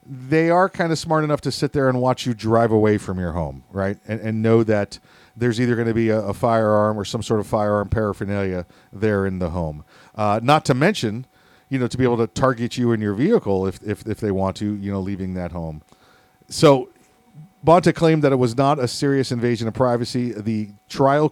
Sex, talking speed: male, 225 wpm